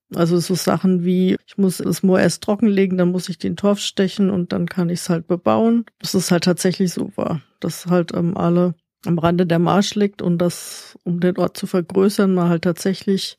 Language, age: German, 50-69